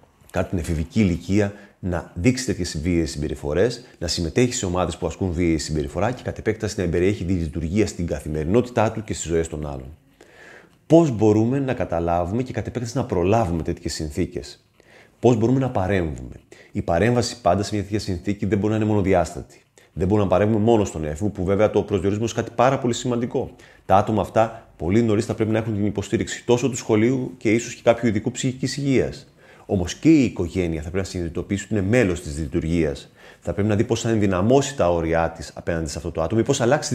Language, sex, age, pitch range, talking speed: Greek, male, 30-49, 85-115 Hz, 205 wpm